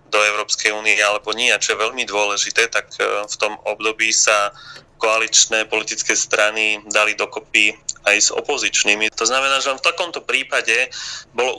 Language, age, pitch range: Slovak, 30-49, 105-120 Hz